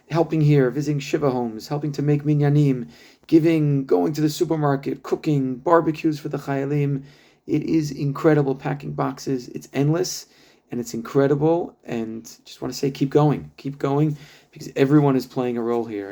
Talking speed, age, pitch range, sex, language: 170 wpm, 30-49, 125-155 Hz, male, English